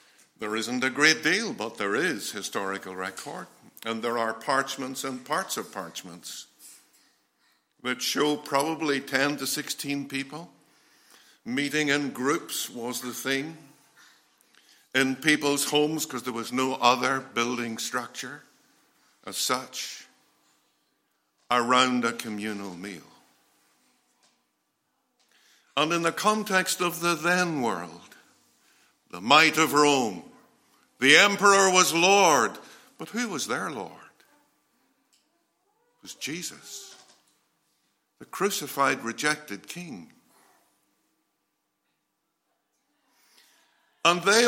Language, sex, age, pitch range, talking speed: English, male, 60-79, 130-190 Hz, 105 wpm